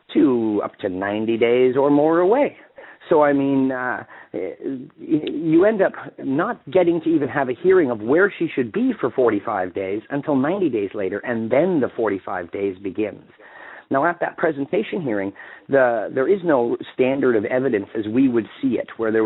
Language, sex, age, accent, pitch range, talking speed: English, male, 40-59, American, 110-165 Hz, 185 wpm